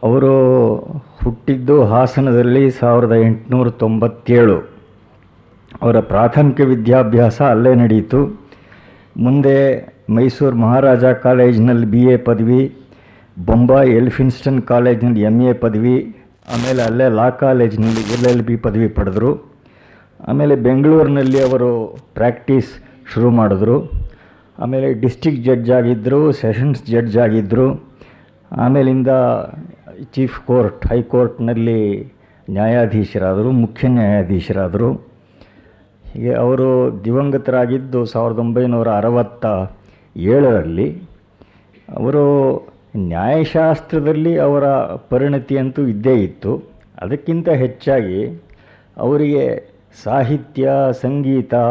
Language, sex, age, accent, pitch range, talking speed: Kannada, male, 50-69, native, 115-135 Hz, 70 wpm